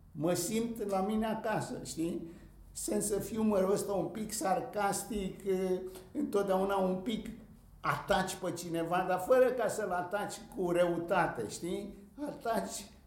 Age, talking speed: 60-79, 130 wpm